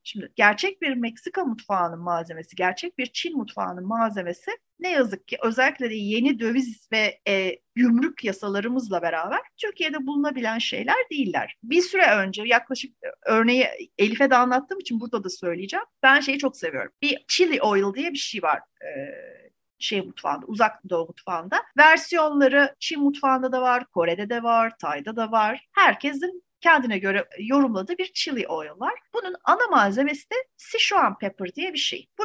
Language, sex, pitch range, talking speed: Turkish, female, 205-330 Hz, 160 wpm